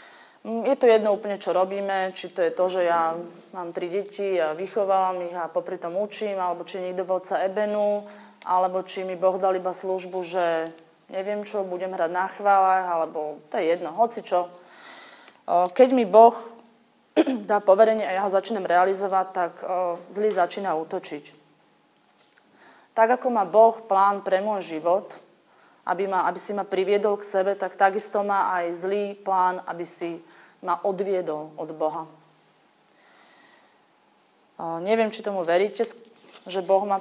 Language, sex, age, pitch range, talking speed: Slovak, female, 20-39, 180-205 Hz, 155 wpm